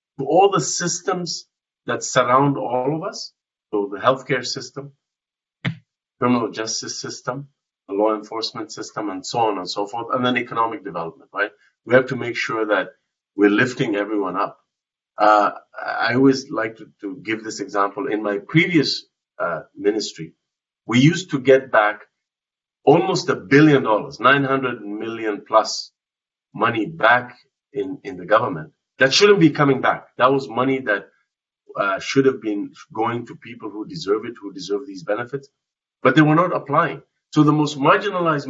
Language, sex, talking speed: English, male, 160 wpm